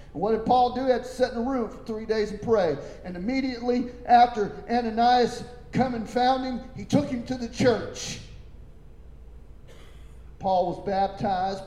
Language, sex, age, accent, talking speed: English, male, 40-59, American, 170 wpm